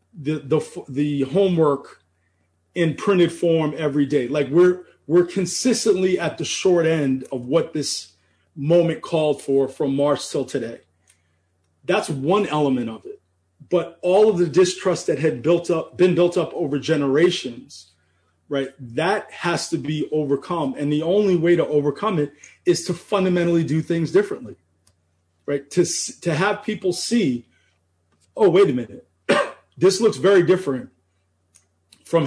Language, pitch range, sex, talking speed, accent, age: English, 130-175 Hz, male, 150 wpm, American, 30-49